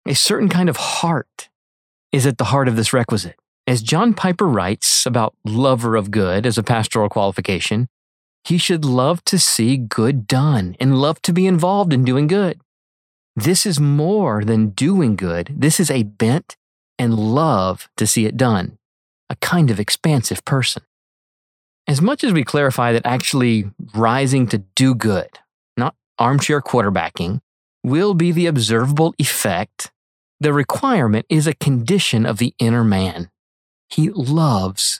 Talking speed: 155 wpm